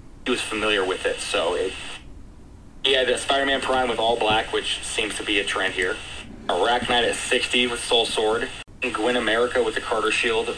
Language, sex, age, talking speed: English, male, 30-49, 195 wpm